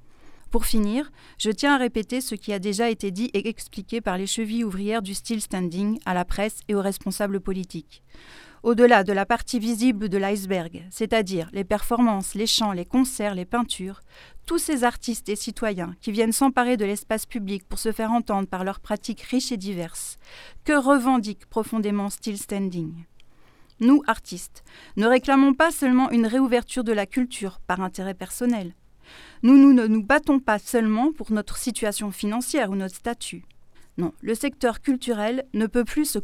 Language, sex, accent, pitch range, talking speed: French, female, French, 200-250 Hz, 175 wpm